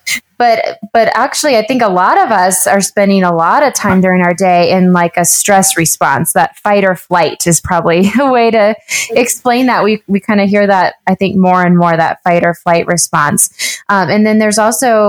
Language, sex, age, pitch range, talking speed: English, female, 20-39, 180-215 Hz, 220 wpm